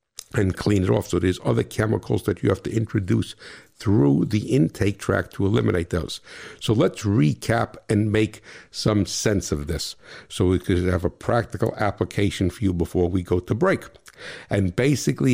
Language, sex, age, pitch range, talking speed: English, male, 60-79, 95-115 Hz, 175 wpm